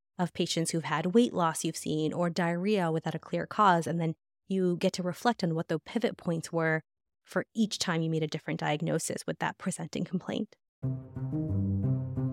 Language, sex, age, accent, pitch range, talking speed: English, female, 20-39, American, 165-205 Hz, 185 wpm